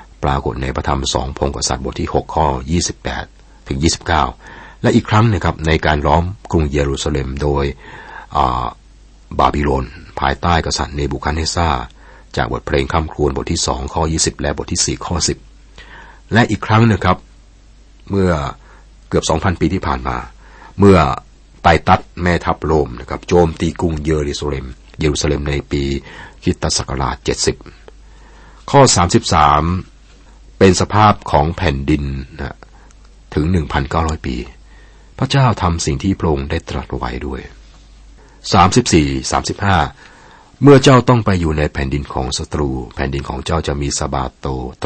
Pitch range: 70-85 Hz